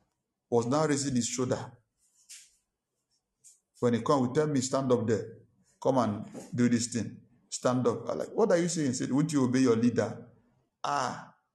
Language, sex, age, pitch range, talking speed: English, male, 50-69, 115-150 Hz, 180 wpm